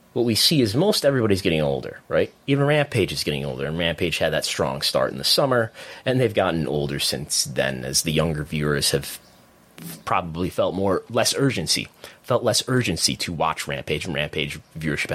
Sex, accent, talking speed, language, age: male, American, 190 wpm, English, 30-49